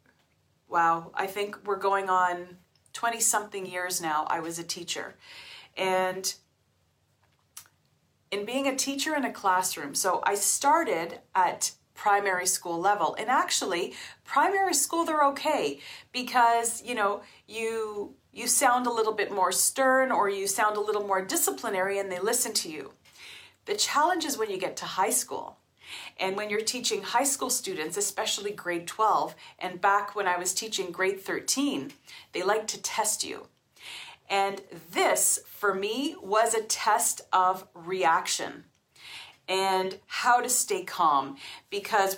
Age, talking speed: 40-59, 150 wpm